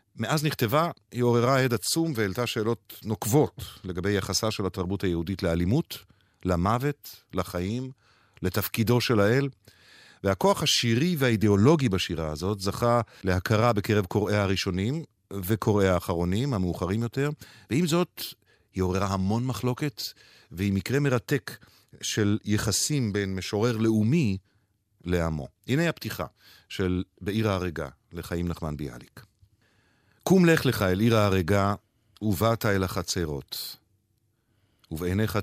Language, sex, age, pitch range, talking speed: Hebrew, male, 50-69, 95-115 Hz, 115 wpm